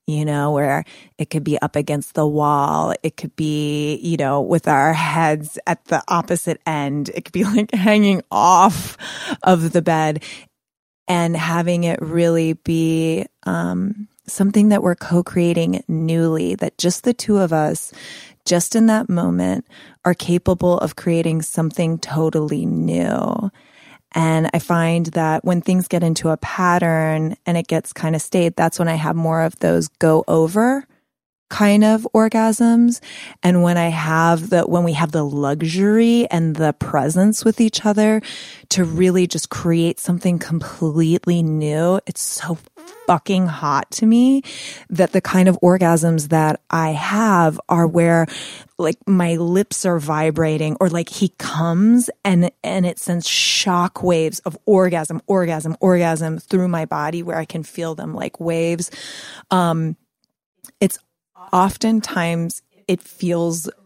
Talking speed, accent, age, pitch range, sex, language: 150 wpm, American, 20-39, 160-185 Hz, female, English